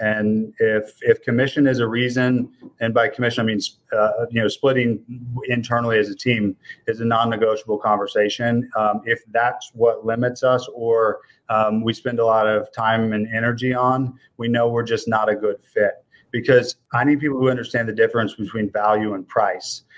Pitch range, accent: 110-130 Hz, American